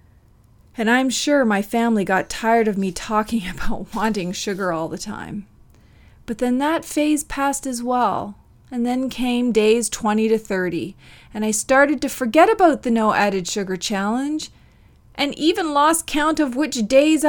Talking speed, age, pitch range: 165 wpm, 30-49, 210-280 Hz